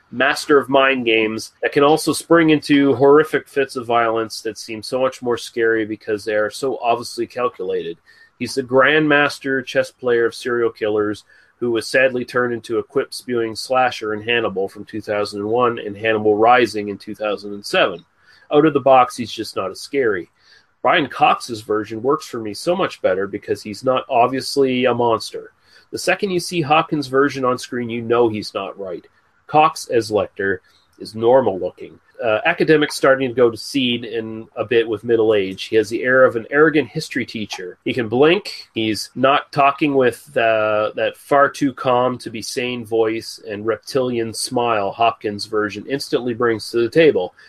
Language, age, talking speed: English, 30-49, 170 wpm